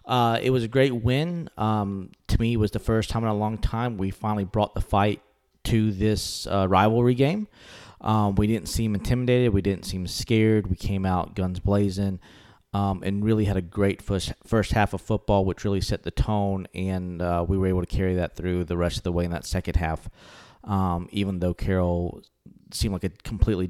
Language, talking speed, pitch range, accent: English, 215 wpm, 95-115 Hz, American